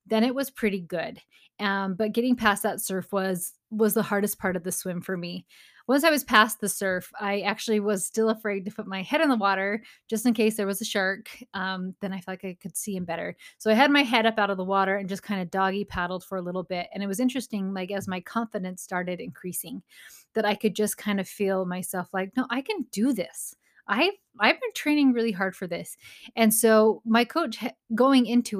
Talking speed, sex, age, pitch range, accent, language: 240 wpm, female, 20-39, 190-225 Hz, American, English